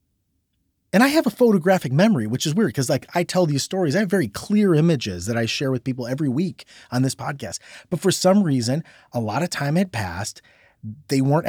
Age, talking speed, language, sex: 30-49, 220 wpm, English, male